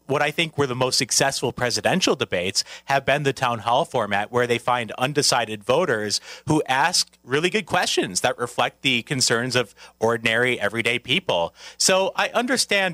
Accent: American